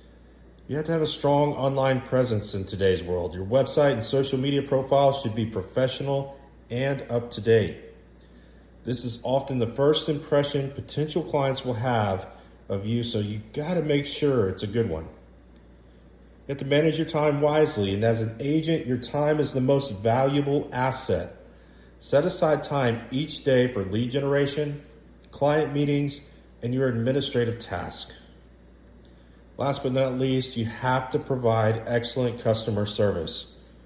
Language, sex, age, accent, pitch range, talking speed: English, male, 40-59, American, 100-145 Hz, 155 wpm